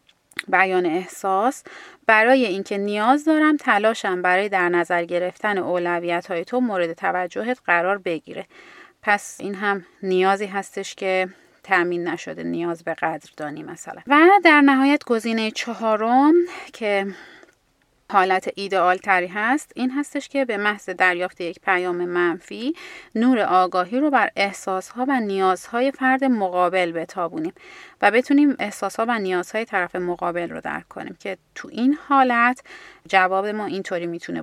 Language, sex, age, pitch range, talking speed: Persian, female, 30-49, 180-255 Hz, 140 wpm